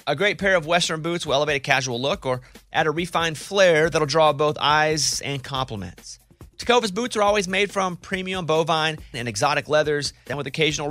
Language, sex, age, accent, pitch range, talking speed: English, male, 30-49, American, 140-180 Hz, 200 wpm